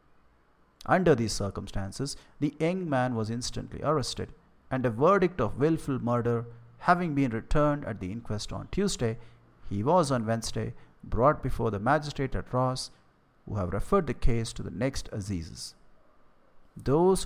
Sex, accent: male, Indian